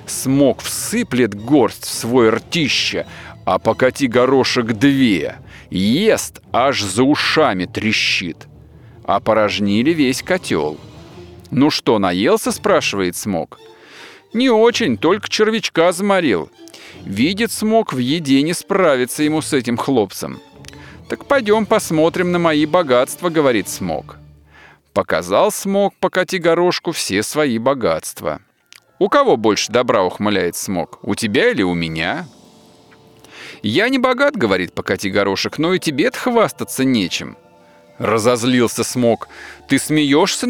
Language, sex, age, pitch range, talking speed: Russian, male, 40-59, 115-185 Hz, 115 wpm